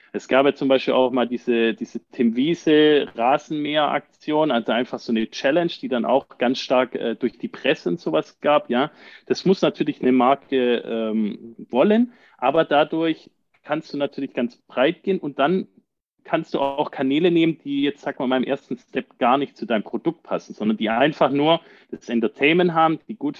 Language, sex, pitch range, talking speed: German, male, 125-165 Hz, 195 wpm